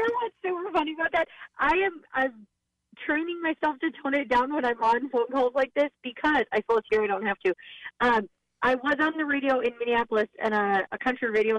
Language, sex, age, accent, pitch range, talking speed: English, female, 30-49, American, 210-275 Hz, 215 wpm